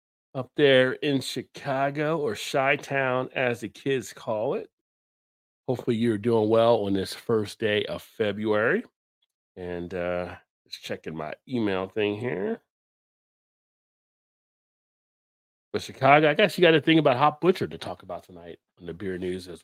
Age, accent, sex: 40-59, American, male